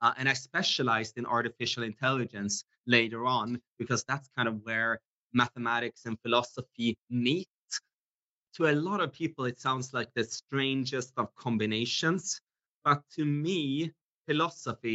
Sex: male